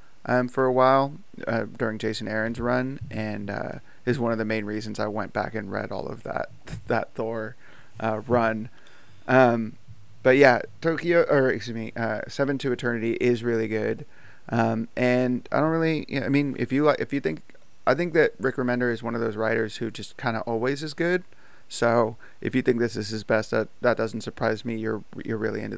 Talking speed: 215 wpm